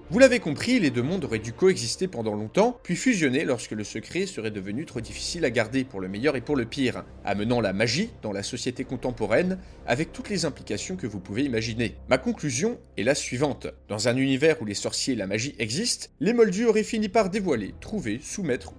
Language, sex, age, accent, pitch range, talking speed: French, male, 30-49, French, 115-190 Hz, 215 wpm